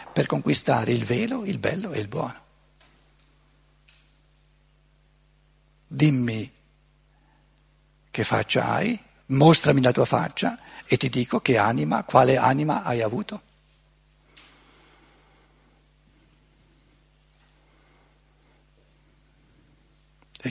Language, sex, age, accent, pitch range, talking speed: Italian, male, 60-79, native, 135-170 Hz, 80 wpm